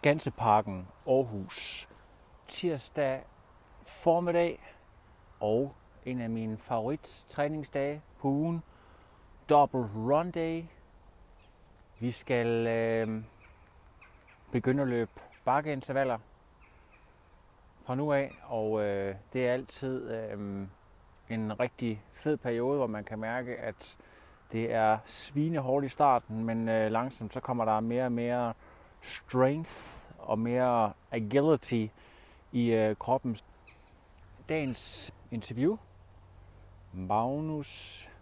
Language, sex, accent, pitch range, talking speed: Danish, male, native, 105-135 Hz, 100 wpm